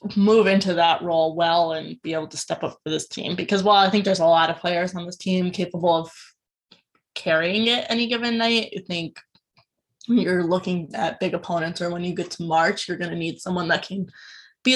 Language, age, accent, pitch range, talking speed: English, 20-39, American, 170-210 Hz, 225 wpm